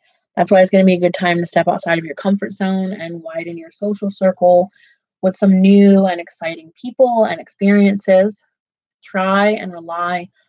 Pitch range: 170-205 Hz